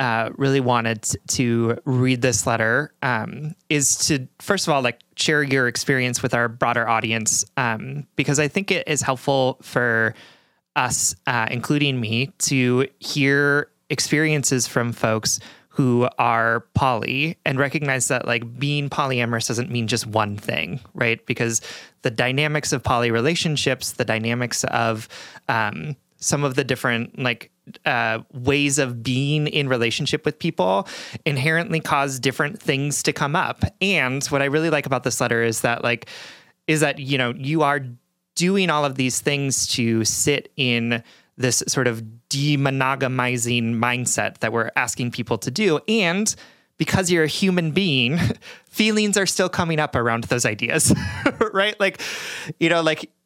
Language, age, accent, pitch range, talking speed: English, 30-49, American, 120-150 Hz, 155 wpm